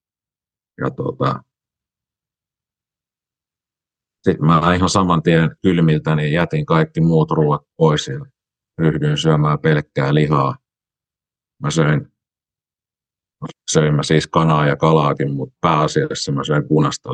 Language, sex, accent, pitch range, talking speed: Finnish, male, native, 70-80 Hz, 110 wpm